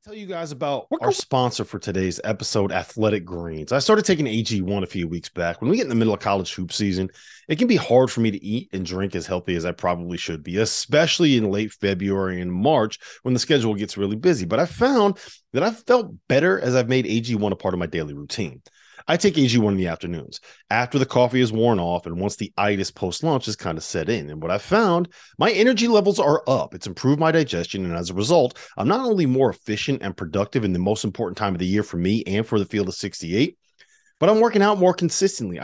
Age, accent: 30-49, American